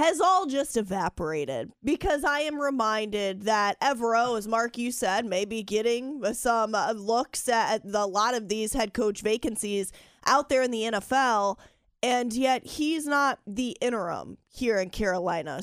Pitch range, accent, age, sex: 225-285 Hz, American, 20-39, female